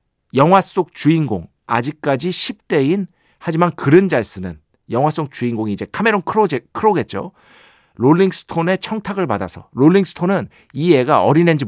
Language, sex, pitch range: Korean, male, 120-180 Hz